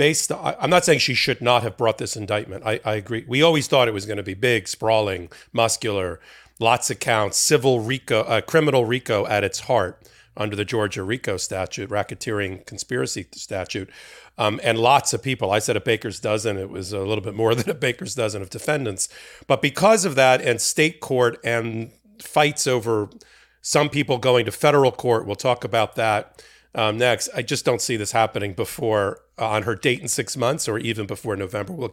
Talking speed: 200 wpm